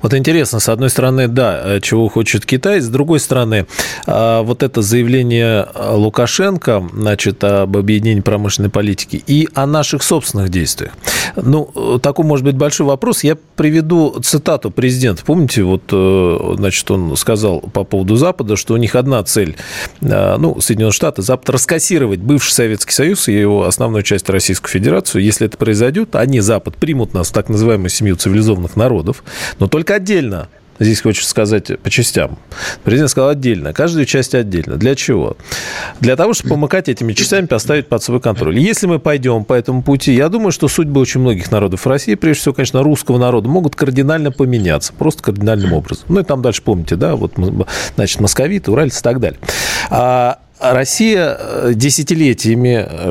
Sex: male